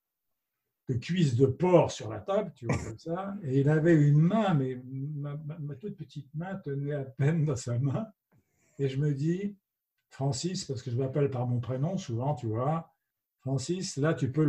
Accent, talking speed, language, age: French, 200 wpm, French, 60-79